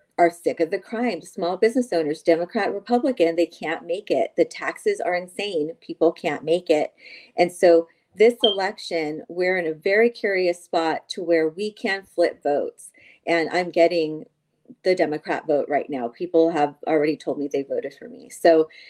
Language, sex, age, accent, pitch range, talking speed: English, female, 40-59, American, 165-205 Hz, 180 wpm